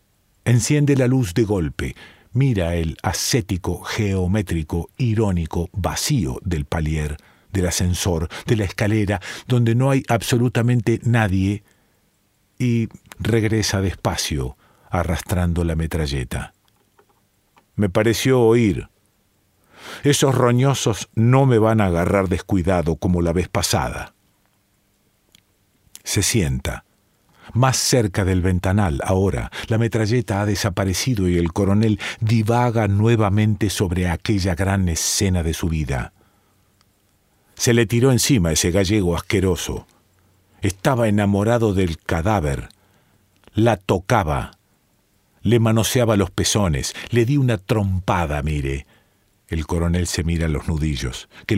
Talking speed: 115 wpm